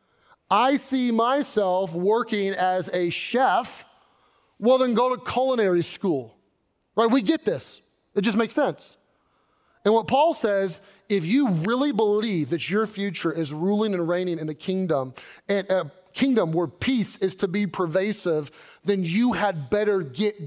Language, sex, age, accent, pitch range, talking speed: English, male, 30-49, American, 180-250 Hz, 155 wpm